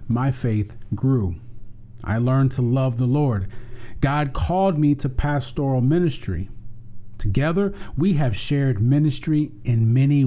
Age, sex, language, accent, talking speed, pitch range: 40-59, male, English, American, 130 wpm, 110-140 Hz